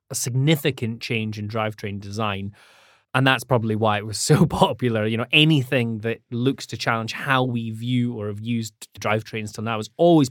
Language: English